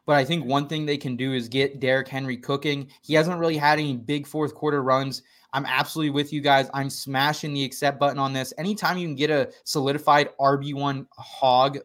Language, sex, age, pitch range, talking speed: English, male, 20-39, 140-170 Hz, 215 wpm